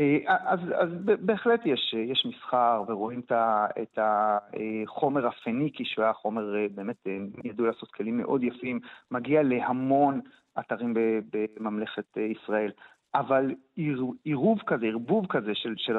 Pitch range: 120-165 Hz